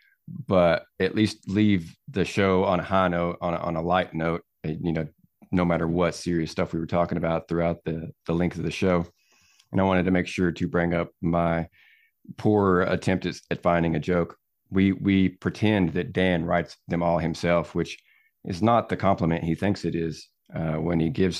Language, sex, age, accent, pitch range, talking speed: English, male, 30-49, American, 85-100 Hz, 205 wpm